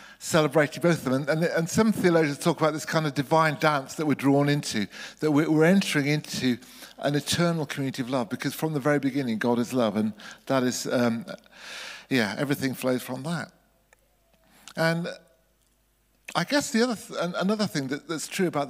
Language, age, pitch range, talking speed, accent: English, 50-69, 135-170 Hz, 180 wpm, British